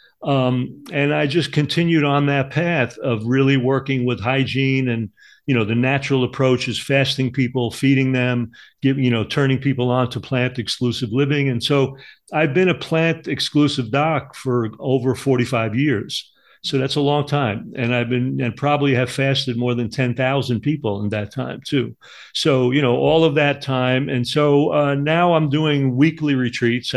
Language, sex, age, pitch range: English, male, 50-69, 125-140 Hz